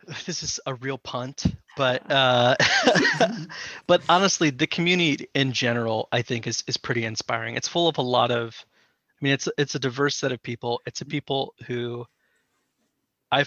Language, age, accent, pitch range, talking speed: English, 20-39, American, 115-135 Hz, 175 wpm